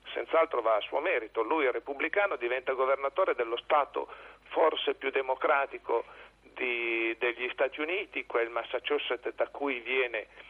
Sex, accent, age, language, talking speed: male, native, 50-69, Italian, 125 wpm